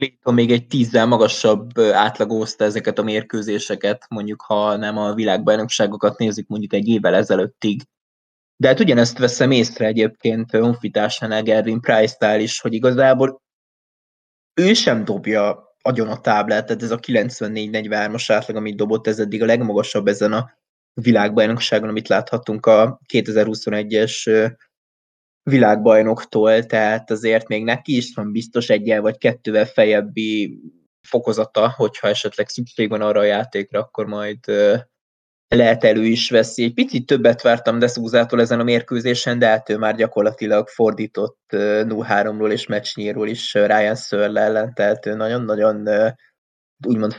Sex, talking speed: male, 135 wpm